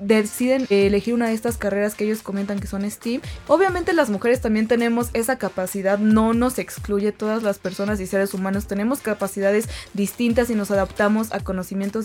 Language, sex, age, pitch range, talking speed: Spanish, female, 20-39, 200-240 Hz, 180 wpm